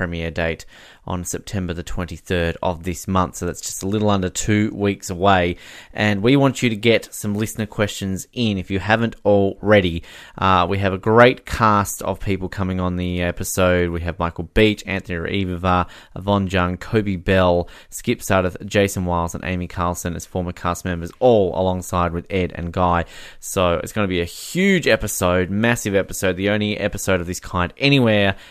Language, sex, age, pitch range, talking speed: English, male, 20-39, 90-105 Hz, 185 wpm